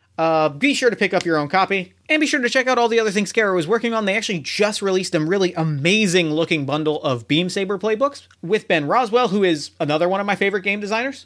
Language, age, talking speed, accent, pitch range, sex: English, 30-49, 255 wpm, American, 160-225 Hz, male